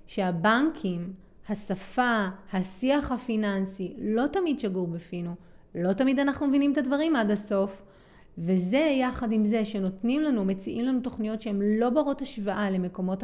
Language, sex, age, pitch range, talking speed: Hebrew, female, 30-49, 195-245 Hz, 135 wpm